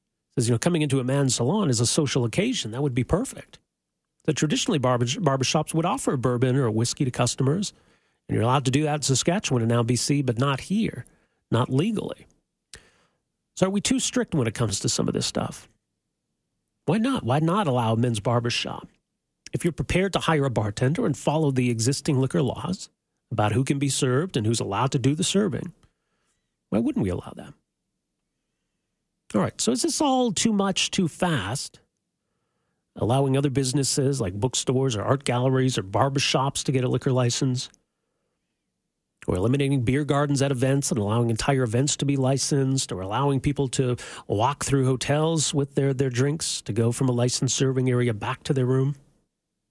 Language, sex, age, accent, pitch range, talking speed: English, male, 40-59, American, 125-155 Hz, 185 wpm